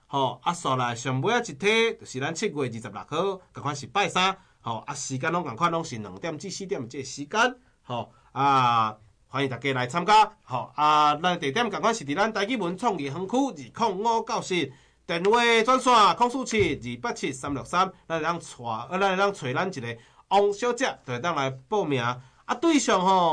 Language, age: Chinese, 40-59